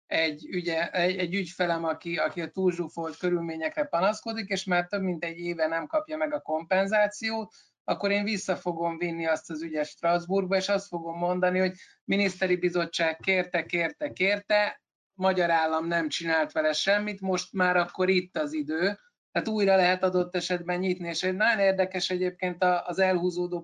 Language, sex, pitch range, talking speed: Hungarian, male, 165-190 Hz, 170 wpm